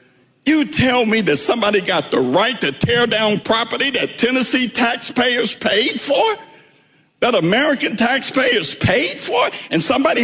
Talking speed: 140 wpm